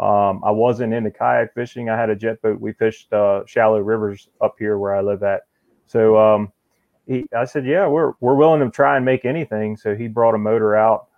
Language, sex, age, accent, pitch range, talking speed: English, male, 30-49, American, 105-125 Hz, 225 wpm